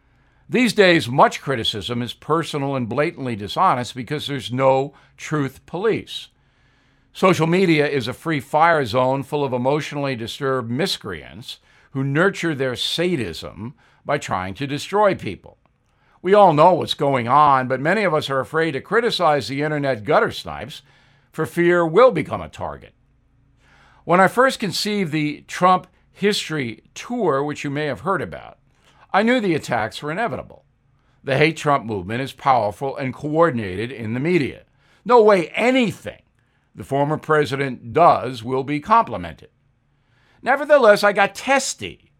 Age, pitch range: 60-79, 130-175 Hz